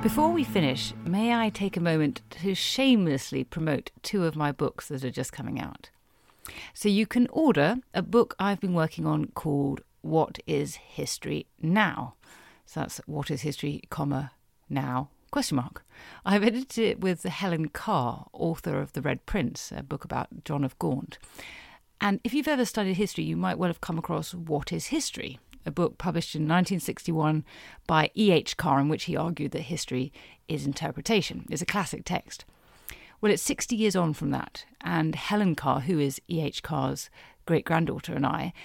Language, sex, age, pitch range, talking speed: English, female, 40-59, 150-200 Hz, 175 wpm